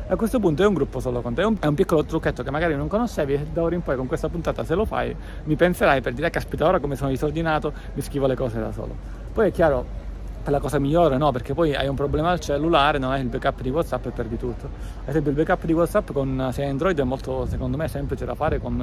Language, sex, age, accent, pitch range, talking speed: Italian, male, 30-49, native, 125-155 Hz, 270 wpm